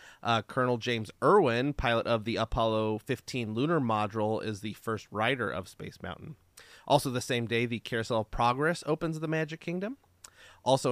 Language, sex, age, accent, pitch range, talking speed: English, male, 30-49, American, 110-145 Hz, 170 wpm